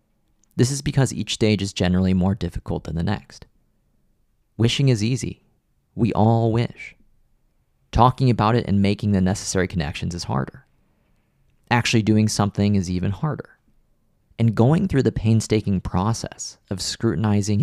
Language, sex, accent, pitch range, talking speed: English, male, American, 95-115 Hz, 145 wpm